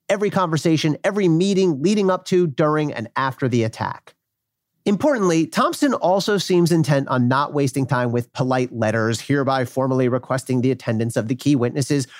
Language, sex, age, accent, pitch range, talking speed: English, male, 40-59, American, 130-175 Hz, 160 wpm